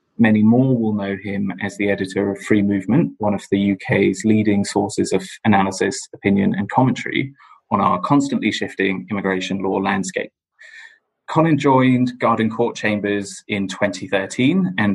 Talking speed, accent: 150 wpm, British